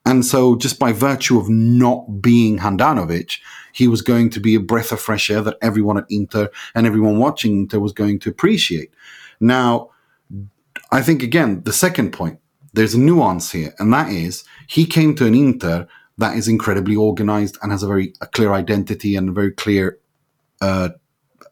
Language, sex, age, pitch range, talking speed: English, male, 30-49, 100-125 Hz, 180 wpm